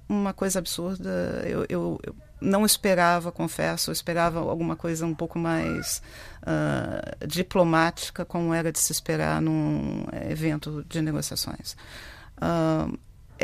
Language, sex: Portuguese, female